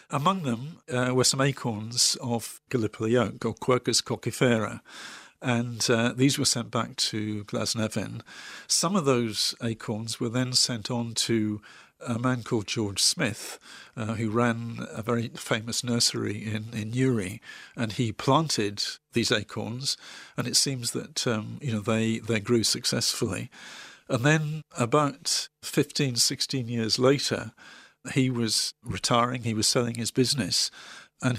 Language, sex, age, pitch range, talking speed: English, male, 50-69, 110-125 Hz, 145 wpm